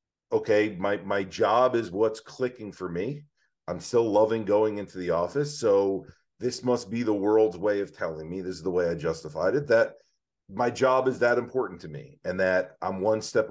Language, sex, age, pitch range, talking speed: English, male, 40-59, 95-115 Hz, 205 wpm